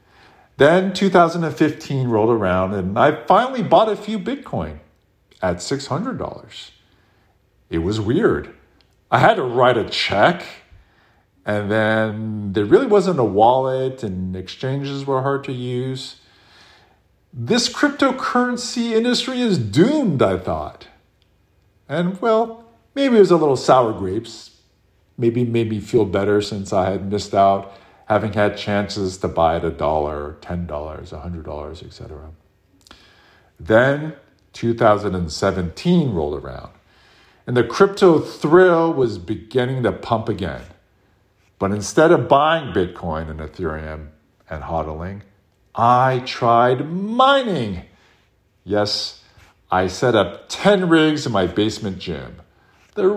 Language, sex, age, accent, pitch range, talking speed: English, male, 50-69, American, 95-155 Hz, 120 wpm